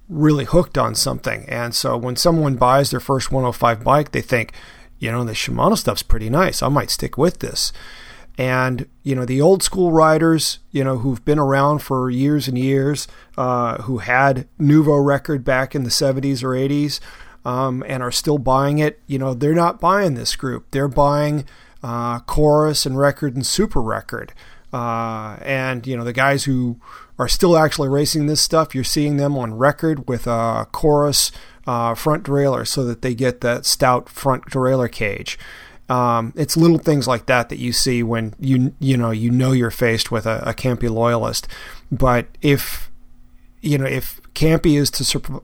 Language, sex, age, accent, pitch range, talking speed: English, male, 30-49, American, 120-145 Hz, 185 wpm